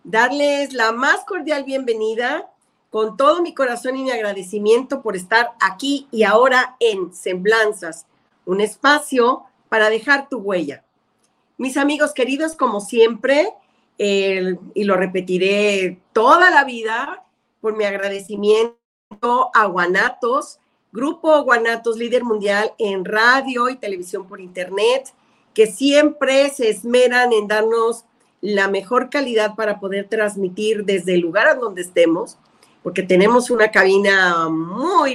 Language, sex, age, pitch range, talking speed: Spanish, female, 40-59, 200-255 Hz, 130 wpm